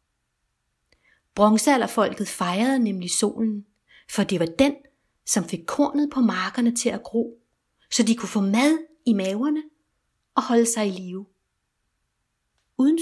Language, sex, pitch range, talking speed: Danish, female, 200-245 Hz, 135 wpm